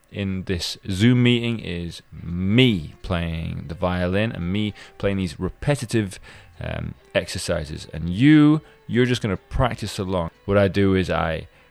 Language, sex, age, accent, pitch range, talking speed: English, male, 20-39, British, 85-125 Hz, 150 wpm